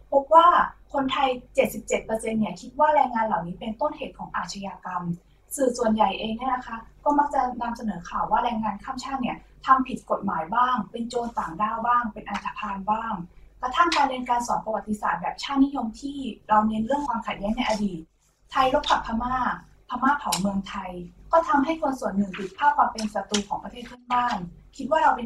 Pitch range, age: 210-265 Hz, 20-39